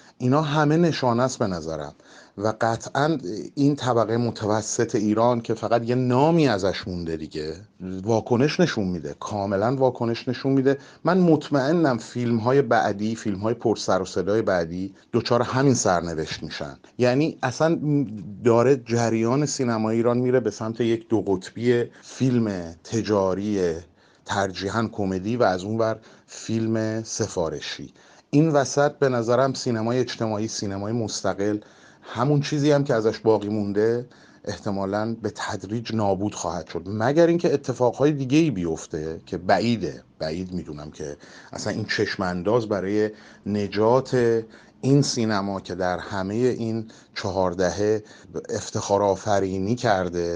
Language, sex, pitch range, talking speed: Persian, male, 100-125 Hz, 130 wpm